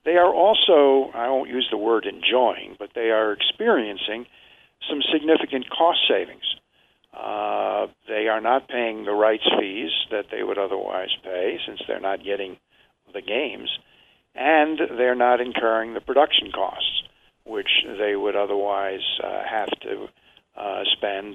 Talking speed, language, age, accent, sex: 145 wpm, English, 50-69, American, male